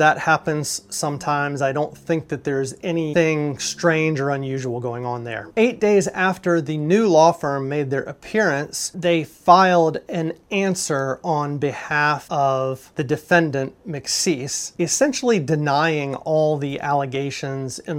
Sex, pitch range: male, 145-180 Hz